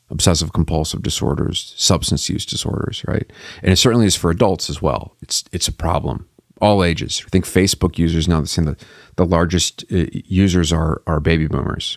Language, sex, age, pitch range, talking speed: English, male, 40-59, 85-105 Hz, 180 wpm